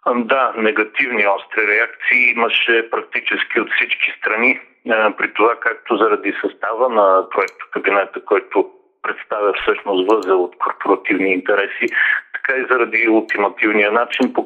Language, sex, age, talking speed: Bulgarian, male, 50-69, 130 wpm